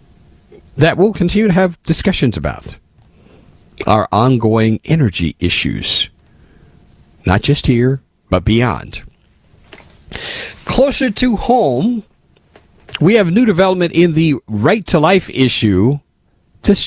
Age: 50-69